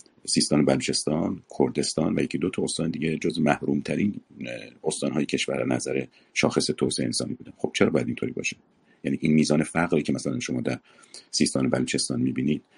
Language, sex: Persian, male